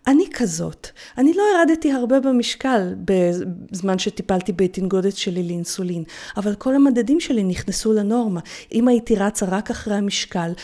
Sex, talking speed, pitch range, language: female, 135 wpm, 200-300 Hz, Hebrew